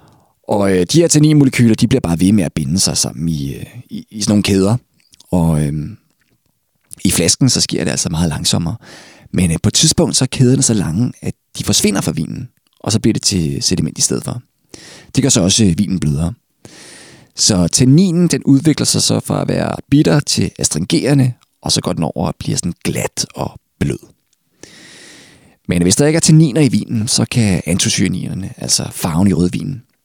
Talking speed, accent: 190 wpm, native